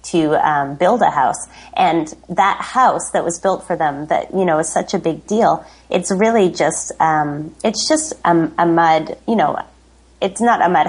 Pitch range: 150-175 Hz